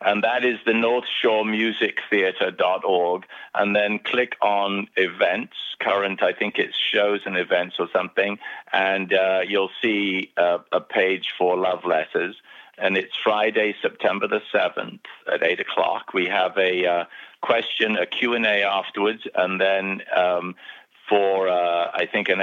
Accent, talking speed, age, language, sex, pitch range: British, 150 wpm, 50-69, English, male, 85-105 Hz